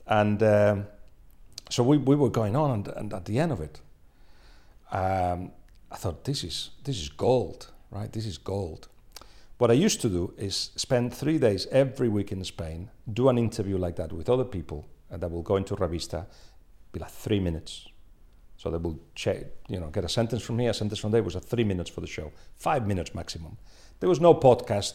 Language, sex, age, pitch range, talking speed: English, male, 40-59, 90-125 Hz, 210 wpm